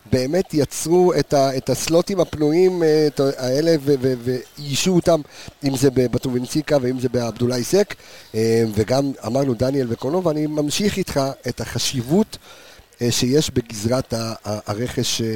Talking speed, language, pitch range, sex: 130 wpm, Hebrew, 125-160 Hz, male